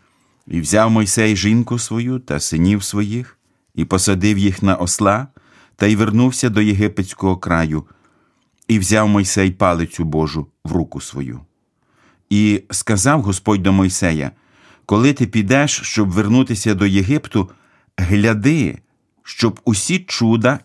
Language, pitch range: Ukrainian, 90-115 Hz